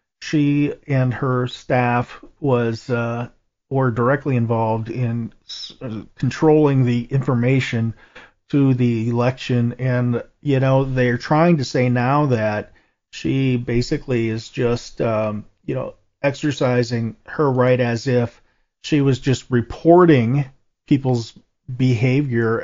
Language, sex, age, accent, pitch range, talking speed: English, male, 40-59, American, 120-145 Hz, 115 wpm